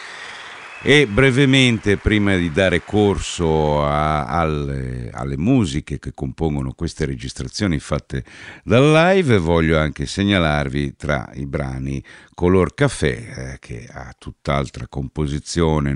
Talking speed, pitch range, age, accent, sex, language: 115 wpm, 65-85 Hz, 50-69, native, male, Italian